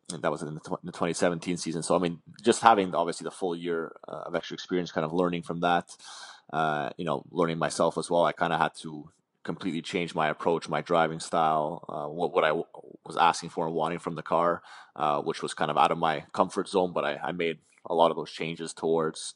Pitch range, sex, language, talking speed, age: 80-85 Hz, male, English, 245 wpm, 20-39